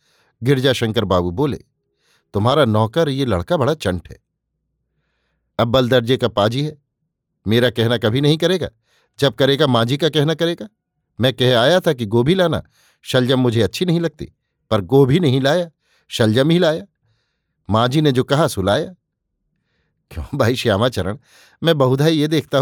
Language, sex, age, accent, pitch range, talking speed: Hindi, male, 50-69, native, 115-160 Hz, 155 wpm